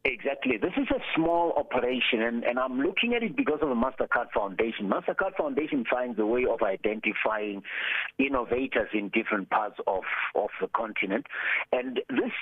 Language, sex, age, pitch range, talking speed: English, male, 60-79, 115-170 Hz, 165 wpm